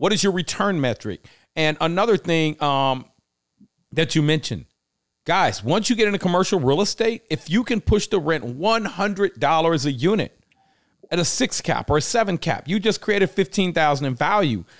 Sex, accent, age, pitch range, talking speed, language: male, American, 40-59, 135-180 Hz, 175 wpm, English